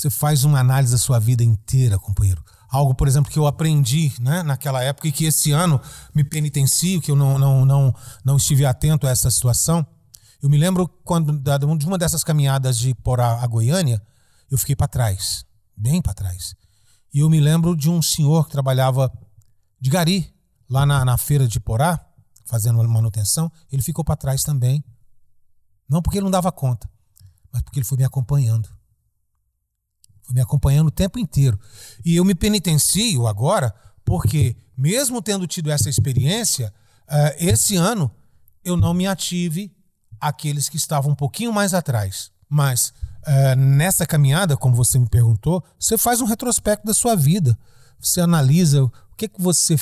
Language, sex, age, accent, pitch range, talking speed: Portuguese, male, 40-59, Brazilian, 120-160 Hz, 170 wpm